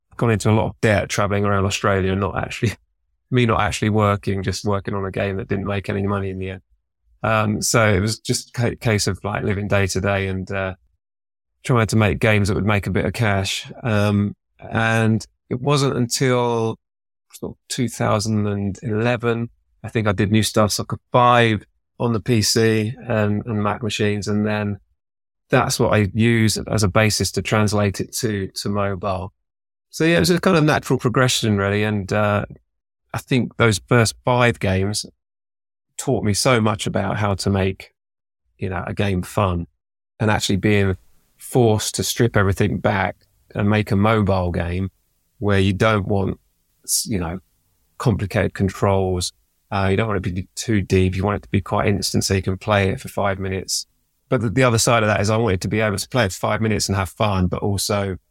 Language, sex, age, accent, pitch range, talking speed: English, male, 20-39, British, 95-110 Hz, 195 wpm